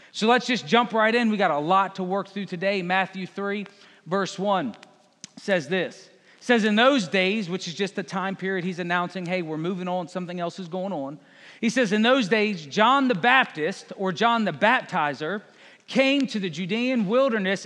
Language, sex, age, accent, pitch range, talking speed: English, male, 40-59, American, 185-240 Hz, 200 wpm